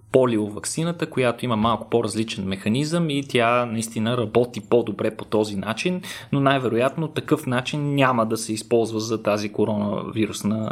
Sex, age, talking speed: male, 20-39, 140 wpm